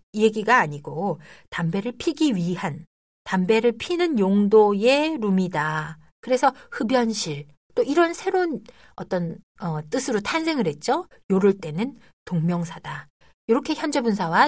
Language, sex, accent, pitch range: Korean, female, native, 165-275 Hz